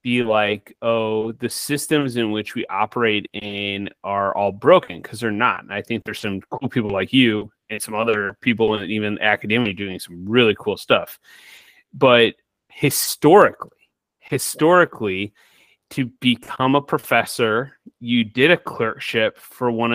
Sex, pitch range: male, 110-135 Hz